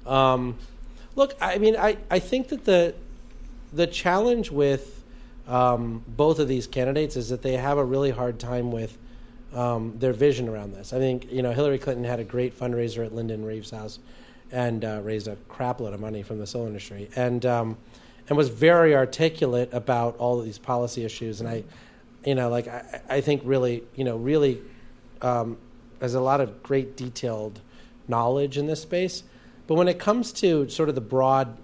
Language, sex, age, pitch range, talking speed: English, male, 40-59, 120-145 Hz, 190 wpm